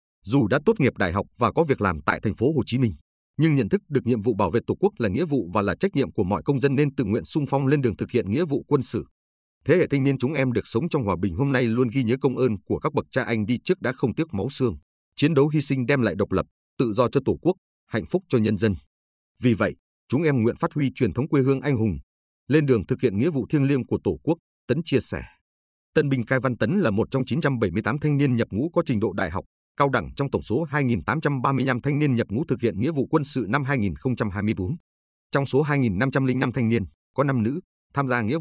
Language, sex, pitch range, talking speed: Vietnamese, male, 105-140 Hz, 270 wpm